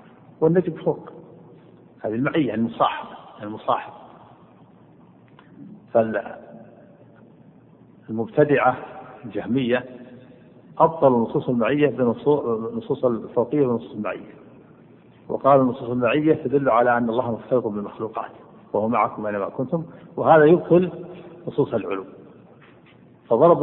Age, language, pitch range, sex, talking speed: 50-69, Arabic, 120-160 Hz, male, 85 wpm